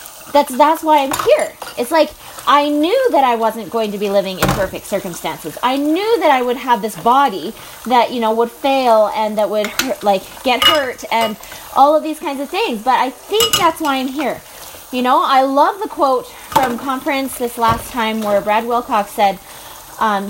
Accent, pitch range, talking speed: American, 230-305 Hz, 200 wpm